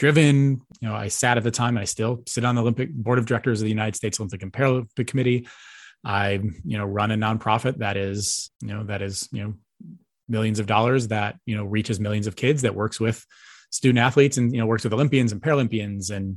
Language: English